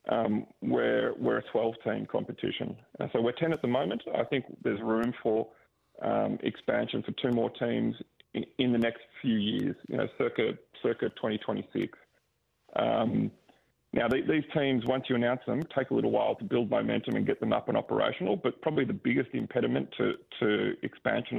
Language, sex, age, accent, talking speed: English, male, 40-59, Australian, 185 wpm